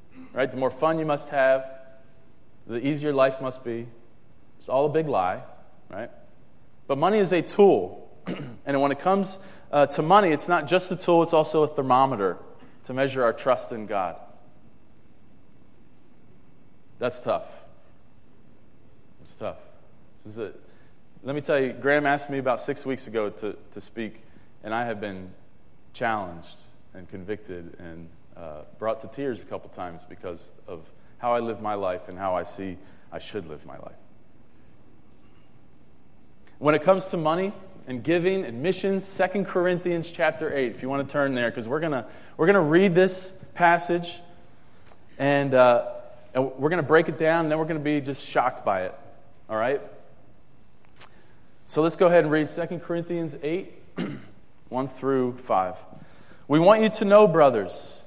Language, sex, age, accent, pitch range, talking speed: English, male, 30-49, American, 120-170 Hz, 170 wpm